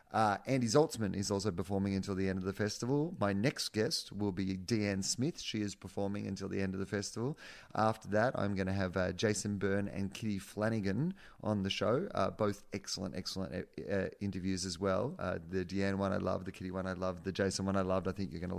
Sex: male